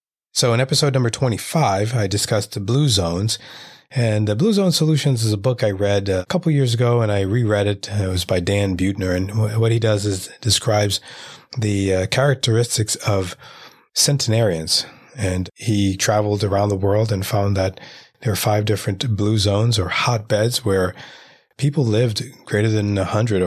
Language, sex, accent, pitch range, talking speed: English, male, American, 100-120 Hz, 170 wpm